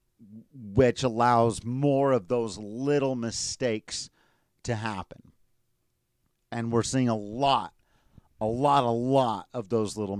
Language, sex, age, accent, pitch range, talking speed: English, male, 40-59, American, 115-140 Hz, 125 wpm